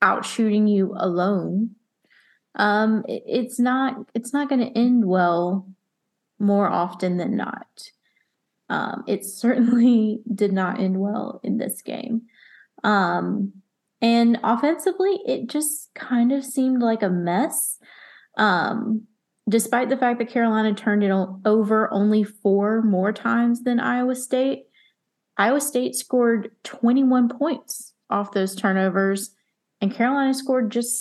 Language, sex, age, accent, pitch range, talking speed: English, female, 20-39, American, 195-250 Hz, 130 wpm